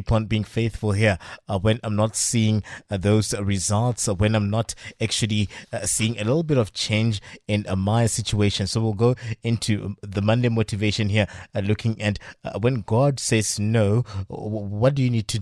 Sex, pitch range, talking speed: male, 105-115 Hz, 195 wpm